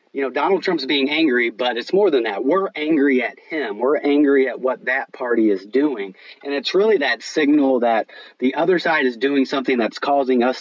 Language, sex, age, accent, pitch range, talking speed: English, male, 30-49, American, 115-150 Hz, 215 wpm